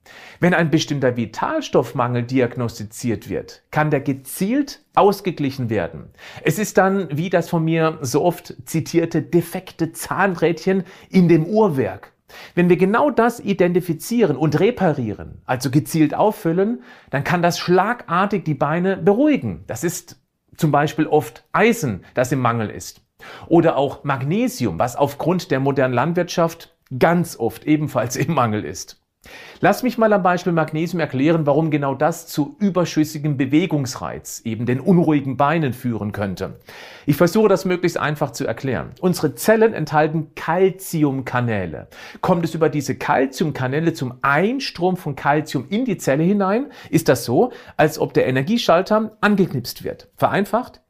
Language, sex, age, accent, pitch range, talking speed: German, male, 40-59, German, 135-185 Hz, 140 wpm